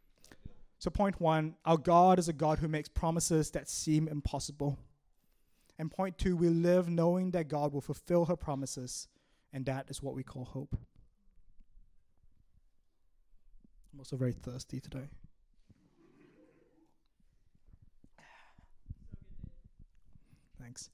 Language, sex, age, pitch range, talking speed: English, male, 20-39, 140-180 Hz, 110 wpm